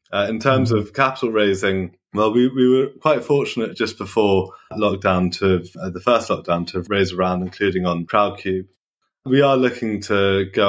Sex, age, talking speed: male, 20-39, 180 wpm